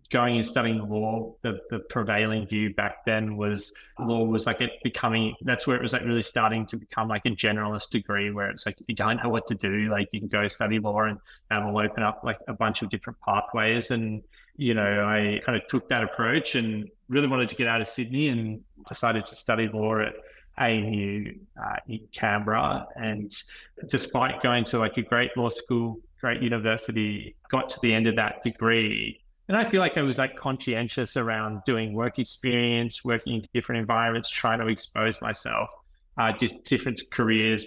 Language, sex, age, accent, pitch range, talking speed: English, male, 20-39, Australian, 110-125 Hz, 200 wpm